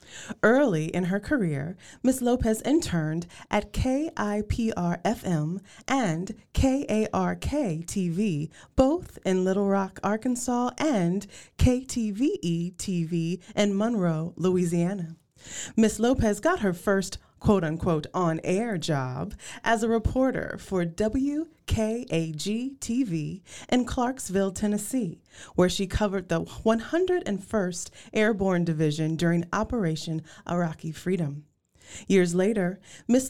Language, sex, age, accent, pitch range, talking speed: English, female, 20-39, American, 170-225 Hz, 95 wpm